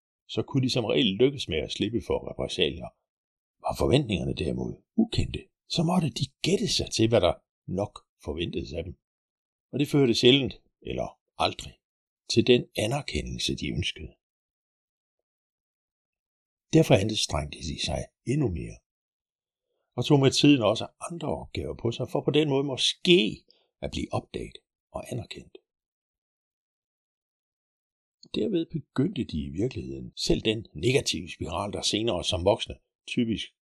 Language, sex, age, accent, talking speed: Danish, male, 60-79, native, 140 wpm